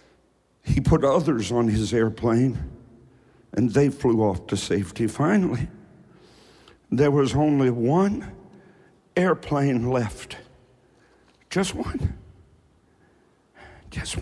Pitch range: 110-170 Hz